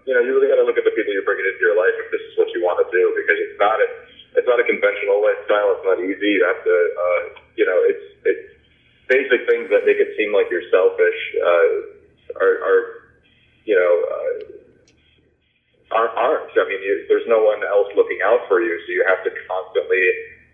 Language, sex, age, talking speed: English, male, 30-49, 215 wpm